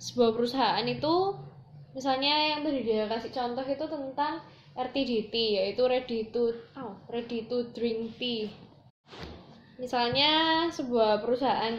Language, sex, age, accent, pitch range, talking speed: Indonesian, female, 10-29, native, 225-270 Hz, 115 wpm